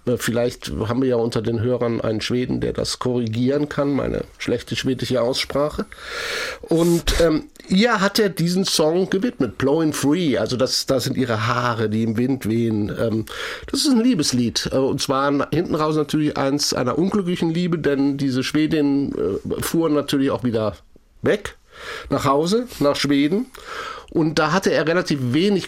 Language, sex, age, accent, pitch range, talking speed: German, male, 60-79, German, 130-175 Hz, 160 wpm